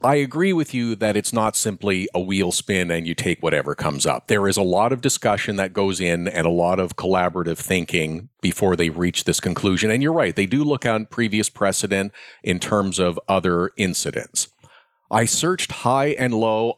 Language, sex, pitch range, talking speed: English, male, 100-125 Hz, 200 wpm